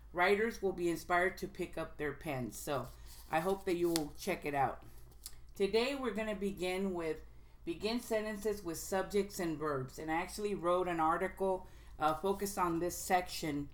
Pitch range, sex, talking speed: 155-185 Hz, female, 175 wpm